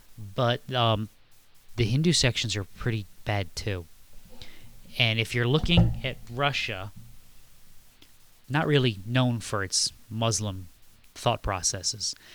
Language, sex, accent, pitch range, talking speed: English, male, American, 100-120 Hz, 110 wpm